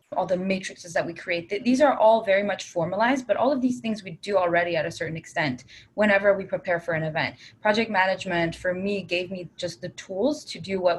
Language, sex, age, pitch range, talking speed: English, female, 20-39, 175-240 Hz, 230 wpm